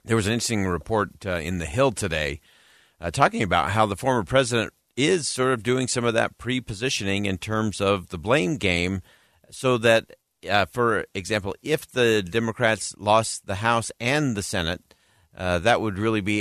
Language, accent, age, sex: English, American, 50-69, male